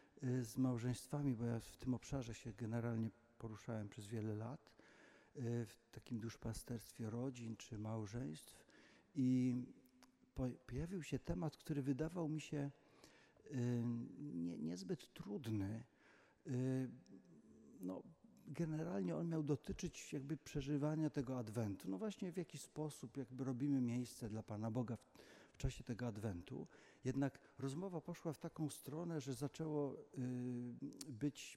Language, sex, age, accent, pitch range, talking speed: Polish, male, 50-69, native, 120-145 Hz, 120 wpm